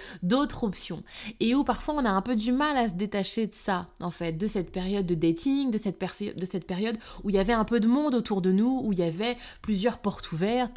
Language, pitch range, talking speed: French, 185-240 Hz, 260 wpm